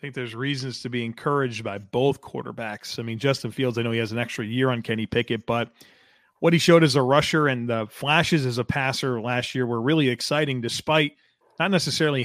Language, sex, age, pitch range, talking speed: English, male, 30-49, 120-145 Hz, 220 wpm